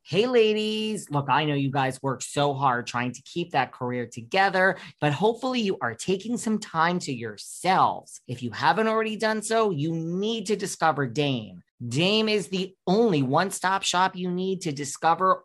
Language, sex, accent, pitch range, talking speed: English, male, American, 135-205 Hz, 180 wpm